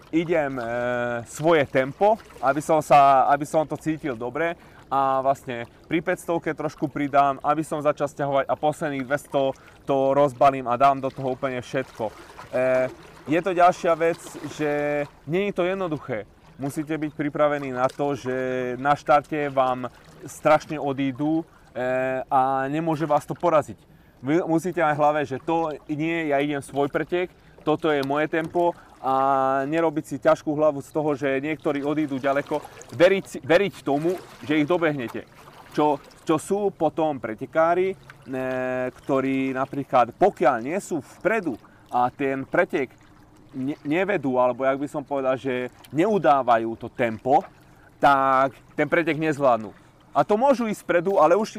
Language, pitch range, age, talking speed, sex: Slovak, 135-160 Hz, 20-39, 150 wpm, male